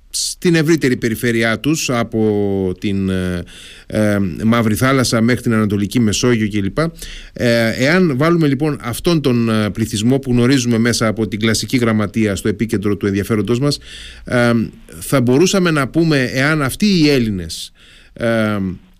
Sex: male